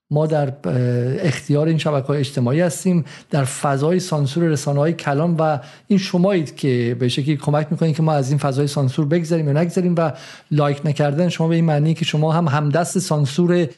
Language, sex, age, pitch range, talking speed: Persian, male, 50-69, 145-175 Hz, 185 wpm